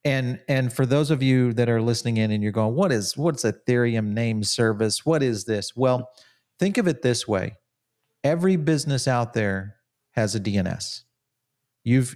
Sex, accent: male, American